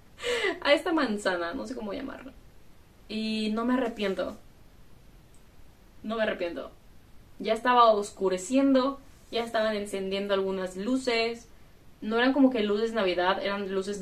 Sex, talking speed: female, 130 wpm